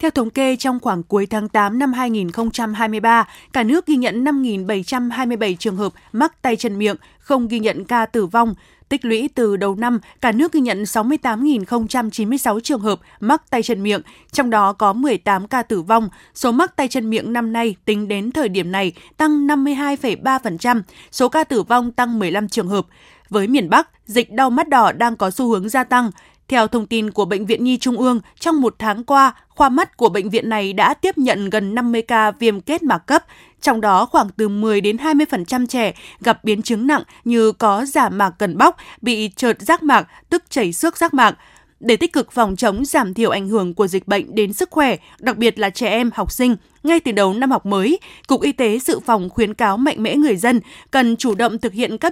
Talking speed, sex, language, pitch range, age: 215 wpm, female, Vietnamese, 215-265 Hz, 20-39